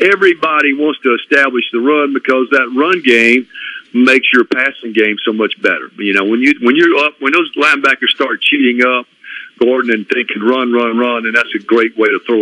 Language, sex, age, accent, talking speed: English, male, 50-69, American, 210 wpm